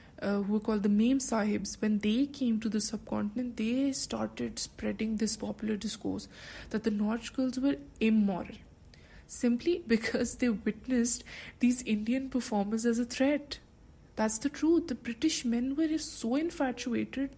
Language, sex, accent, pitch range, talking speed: English, female, Indian, 210-245 Hz, 150 wpm